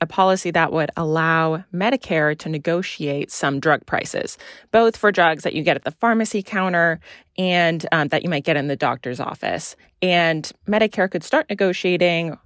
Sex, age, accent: female, 20-39, American